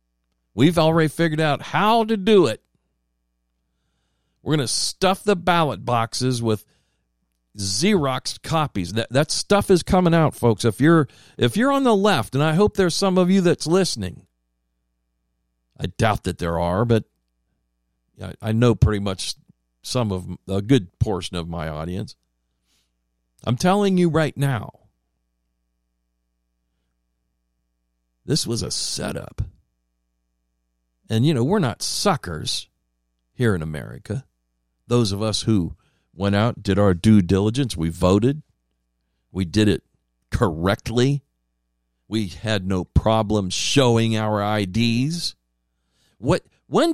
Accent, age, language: American, 50-69, English